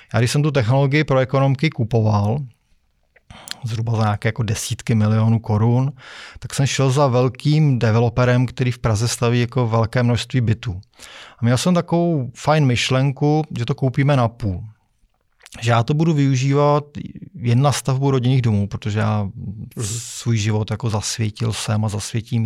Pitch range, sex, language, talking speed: 110-135 Hz, male, Czech, 160 wpm